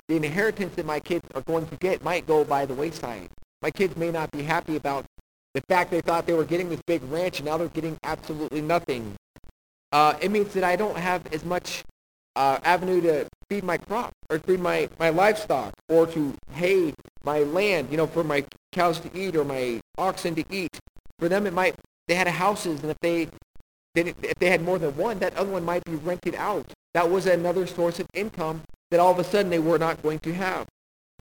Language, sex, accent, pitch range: English, male, American, 150-185 Hz